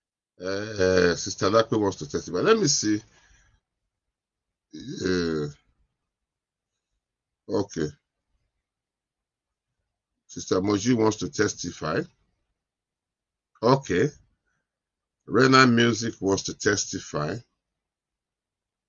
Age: 50-69